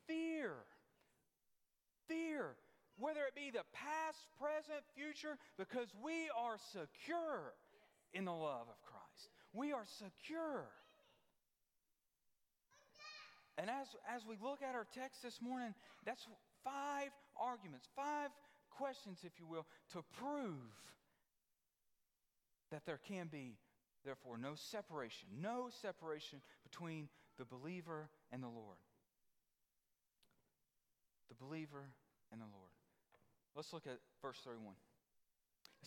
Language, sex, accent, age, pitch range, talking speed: English, male, American, 40-59, 160-265 Hz, 110 wpm